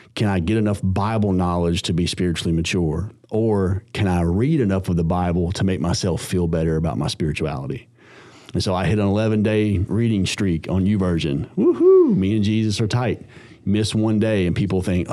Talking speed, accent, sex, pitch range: 190 wpm, American, male, 85-105 Hz